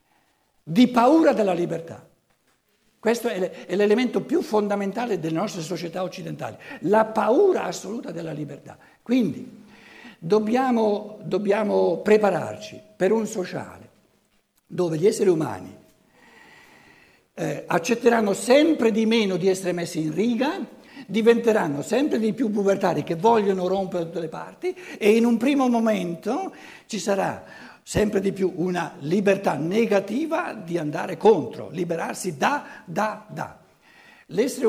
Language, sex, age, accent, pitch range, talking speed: Italian, male, 60-79, native, 170-230 Hz, 125 wpm